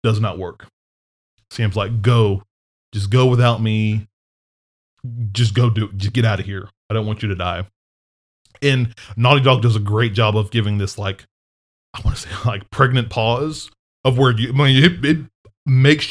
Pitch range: 100-120 Hz